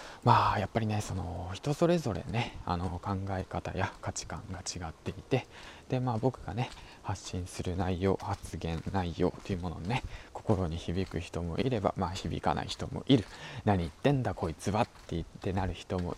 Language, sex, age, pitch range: Japanese, male, 20-39, 90-110 Hz